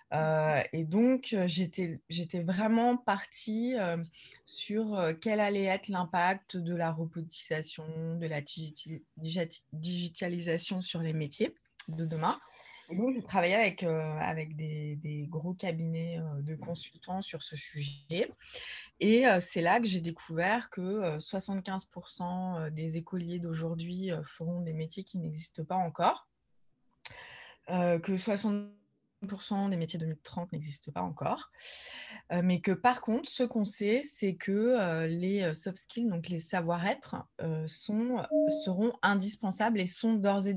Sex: female